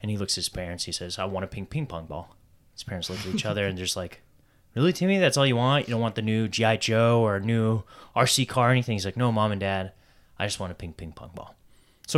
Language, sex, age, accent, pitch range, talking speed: English, male, 20-39, American, 95-130 Hz, 295 wpm